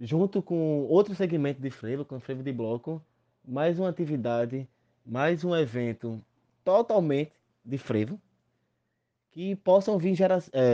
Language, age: Portuguese, 20-39